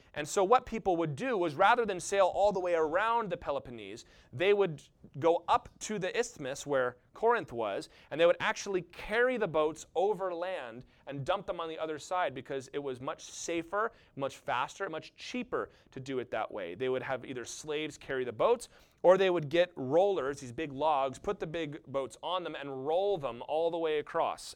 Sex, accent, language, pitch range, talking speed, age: male, American, English, 130-190 Hz, 210 wpm, 30-49